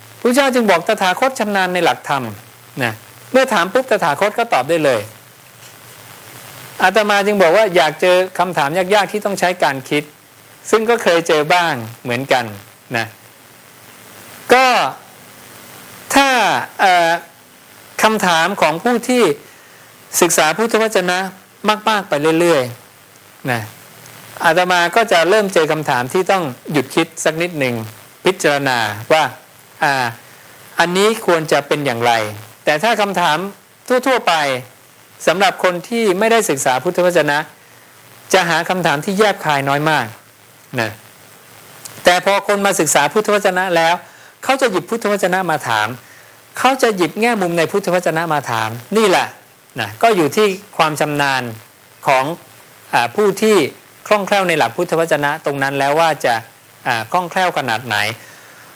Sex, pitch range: male, 140-205 Hz